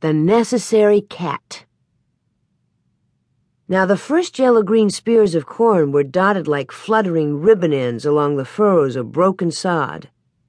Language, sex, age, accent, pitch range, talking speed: English, female, 50-69, American, 155-225 Hz, 125 wpm